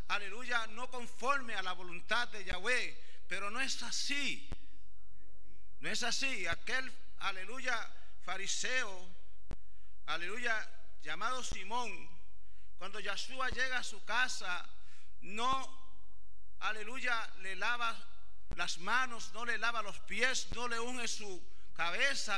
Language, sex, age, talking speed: English, male, 50-69, 115 wpm